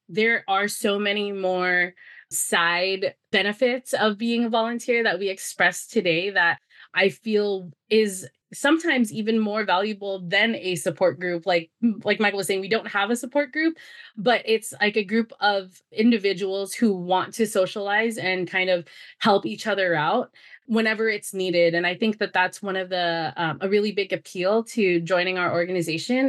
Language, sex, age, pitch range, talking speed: English, female, 20-39, 180-215 Hz, 175 wpm